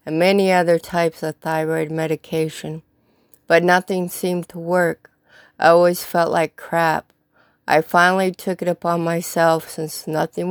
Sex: female